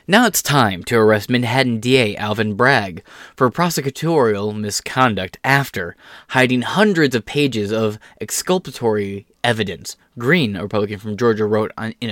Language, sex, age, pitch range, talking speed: English, male, 20-39, 110-140 Hz, 135 wpm